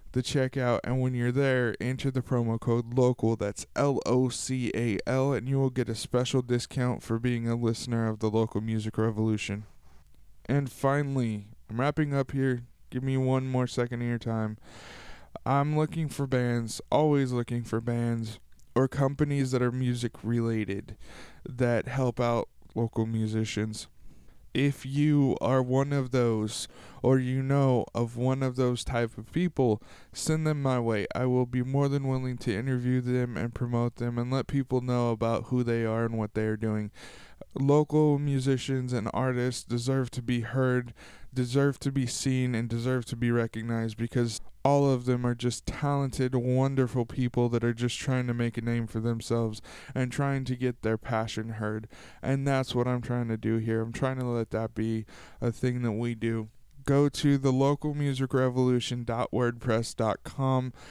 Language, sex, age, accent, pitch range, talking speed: English, male, 20-39, American, 115-130 Hz, 170 wpm